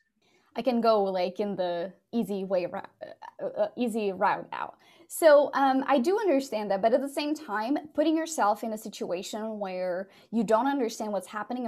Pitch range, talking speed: 205-270 Hz, 175 wpm